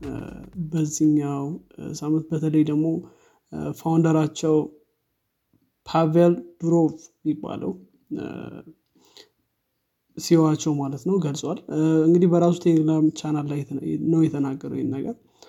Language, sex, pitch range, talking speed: Amharic, male, 150-170 Hz, 75 wpm